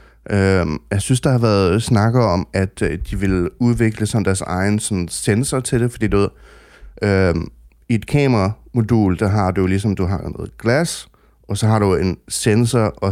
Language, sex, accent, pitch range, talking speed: Danish, male, native, 95-110 Hz, 175 wpm